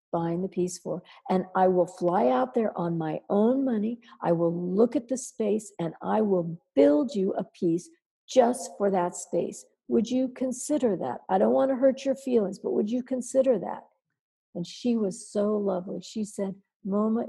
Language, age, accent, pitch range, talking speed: English, 60-79, American, 180-245 Hz, 190 wpm